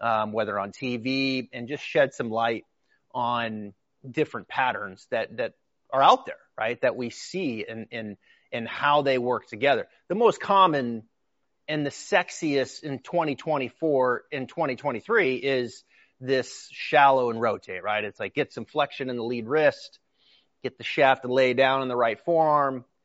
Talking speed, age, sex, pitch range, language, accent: 165 wpm, 30-49, male, 120-150 Hz, English, American